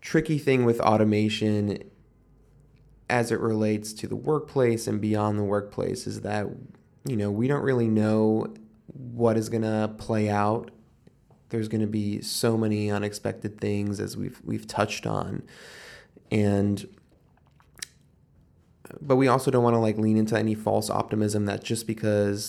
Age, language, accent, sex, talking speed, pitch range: 20-39, English, American, male, 150 wpm, 105-115 Hz